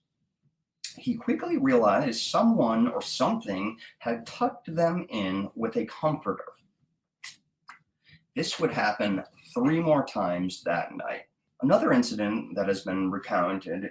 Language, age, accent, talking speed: English, 30-49, American, 115 wpm